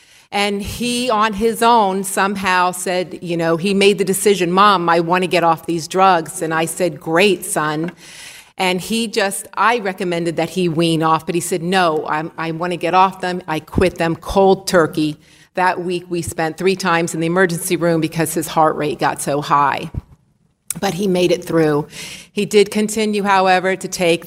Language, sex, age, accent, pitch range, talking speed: English, female, 40-59, American, 165-190 Hz, 195 wpm